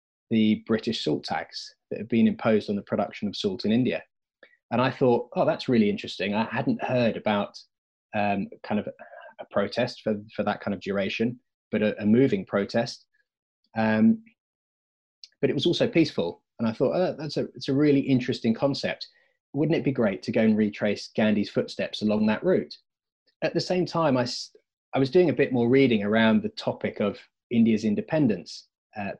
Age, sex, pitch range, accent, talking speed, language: 20-39, male, 105-130 Hz, British, 185 wpm, English